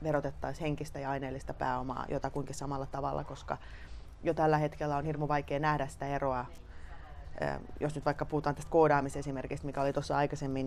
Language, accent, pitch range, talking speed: Finnish, native, 135-155 Hz, 155 wpm